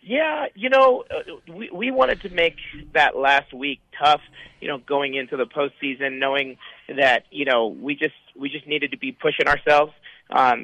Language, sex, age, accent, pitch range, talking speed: English, male, 30-49, American, 125-145 Hz, 180 wpm